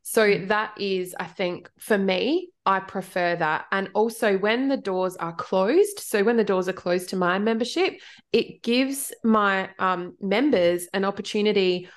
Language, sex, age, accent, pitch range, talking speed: English, female, 20-39, Australian, 185-225 Hz, 165 wpm